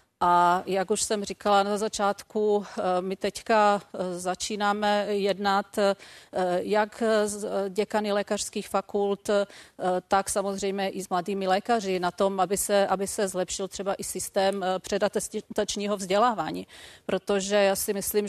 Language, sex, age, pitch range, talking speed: Czech, female, 40-59, 185-205 Hz, 125 wpm